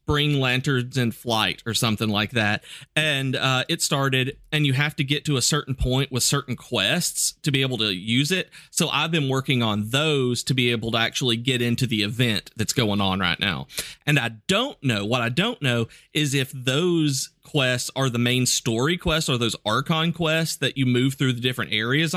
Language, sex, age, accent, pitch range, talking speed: English, male, 30-49, American, 115-140 Hz, 210 wpm